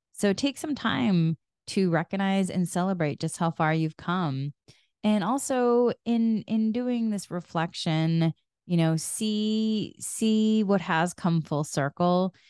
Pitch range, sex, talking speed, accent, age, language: 160-195 Hz, female, 140 wpm, American, 20-39, English